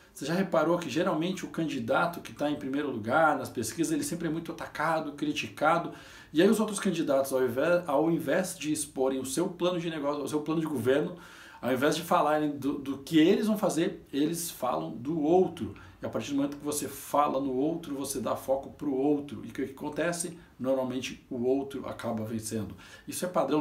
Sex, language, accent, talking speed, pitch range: male, Portuguese, Brazilian, 210 wpm, 140-175 Hz